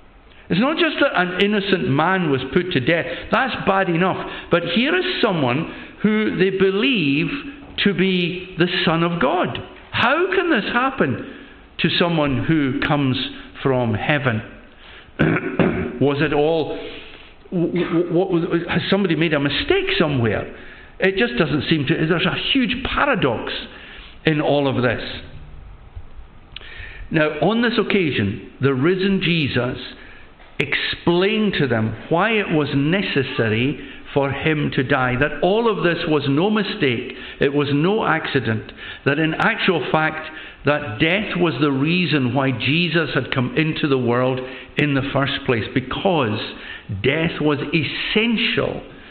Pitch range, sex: 135-185 Hz, male